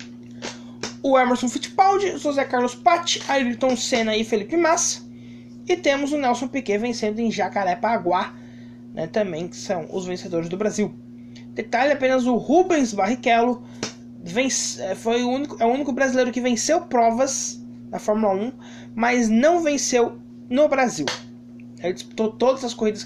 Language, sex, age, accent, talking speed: Portuguese, male, 20-39, Brazilian, 145 wpm